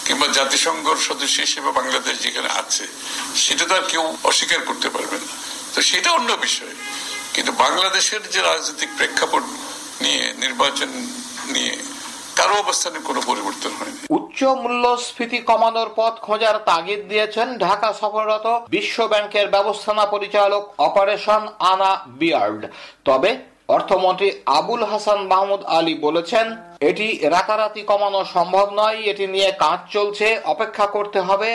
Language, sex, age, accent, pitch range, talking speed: Bengali, male, 60-79, native, 190-220 Hz, 80 wpm